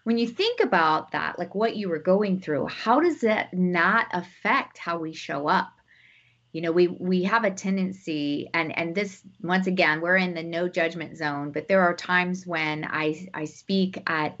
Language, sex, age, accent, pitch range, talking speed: English, female, 30-49, American, 170-230 Hz, 195 wpm